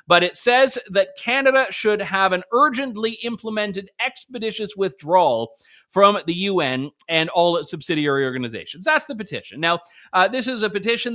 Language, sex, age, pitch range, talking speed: English, male, 30-49, 160-205 Hz, 155 wpm